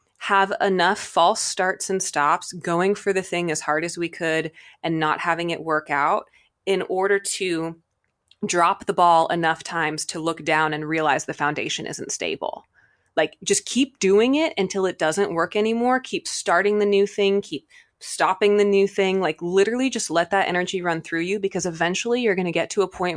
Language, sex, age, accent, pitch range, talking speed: English, female, 20-39, American, 160-205 Hz, 195 wpm